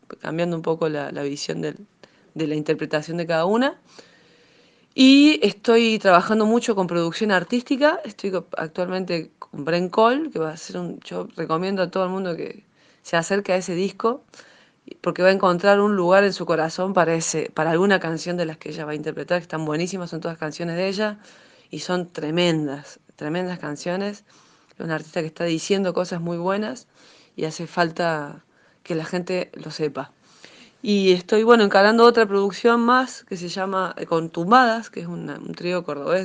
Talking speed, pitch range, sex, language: 180 wpm, 160-200 Hz, female, Spanish